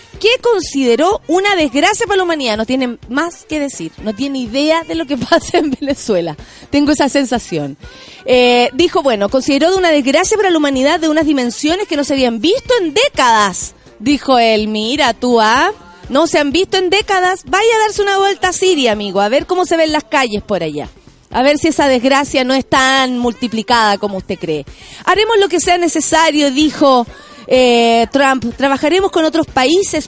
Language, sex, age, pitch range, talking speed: Spanish, female, 30-49, 245-330 Hz, 190 wpm